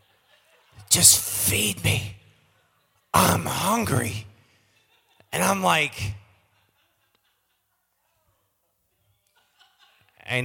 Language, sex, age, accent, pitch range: English, male, 30-49, American, 100-140 Hz